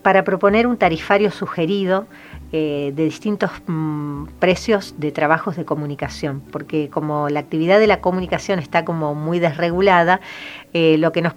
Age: 40-59